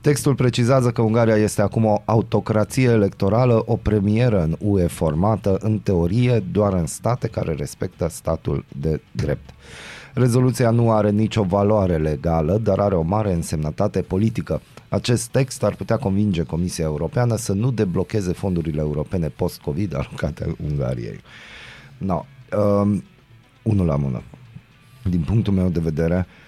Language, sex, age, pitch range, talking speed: Romanian, male, 30-49, 85-120 Hz, 140 wpm